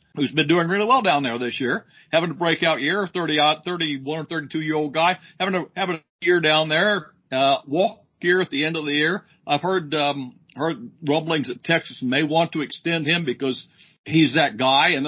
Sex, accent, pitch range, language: male, American, 135-165 Hz, English